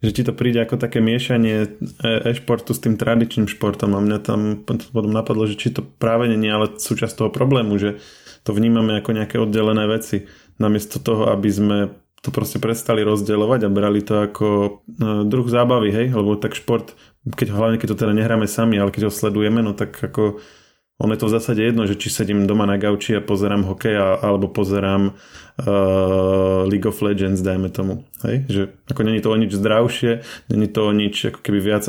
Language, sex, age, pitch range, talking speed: Slovak, male, 20-39, 105-115 Hz, 190 wpm